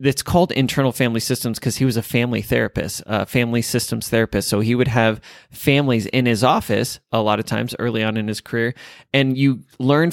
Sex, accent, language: male, American, English